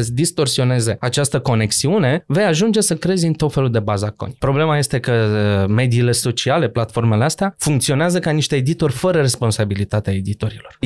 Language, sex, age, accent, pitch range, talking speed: Romanian, male, 20-39, native, 115-170 Hz, 150 wpm